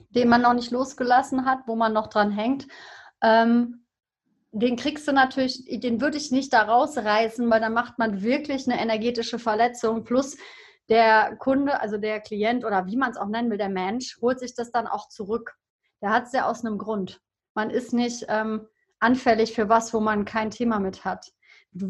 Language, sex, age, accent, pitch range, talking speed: German, female, 30-49, German, 215-260 Hz, 195 wpm